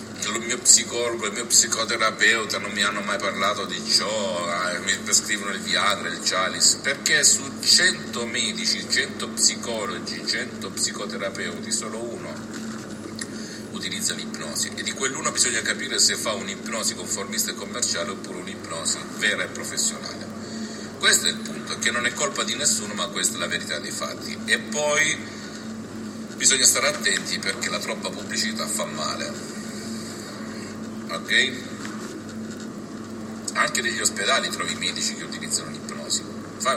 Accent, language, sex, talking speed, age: native, Italian, male, 140 wpm, 50-69